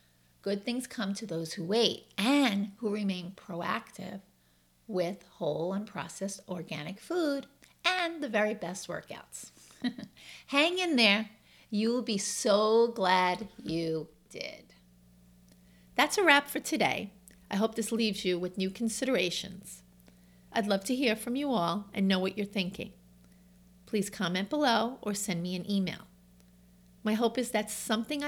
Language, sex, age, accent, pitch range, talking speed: English, female, 40-59, American, 160-220 Hz, 145 wpm